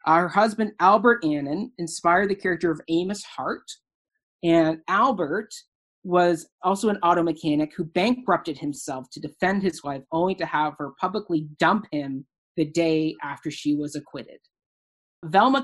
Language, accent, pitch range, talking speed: English, American, 155-200 Hz, 145 wpm